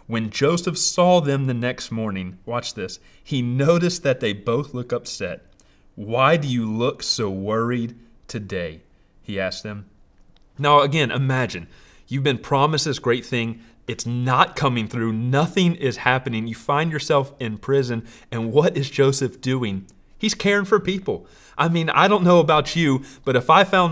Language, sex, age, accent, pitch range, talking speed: English, male, 30-49, American, 110-140 Hz, 170 wpm